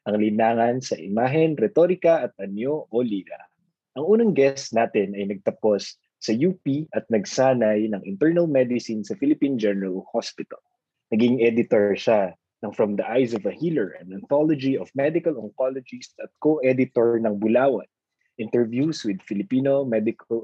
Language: Filipino